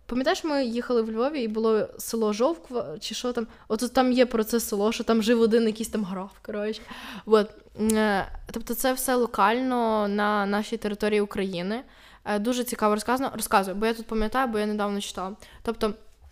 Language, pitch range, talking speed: Ukrainian, 210-255 Hz, 175 wpm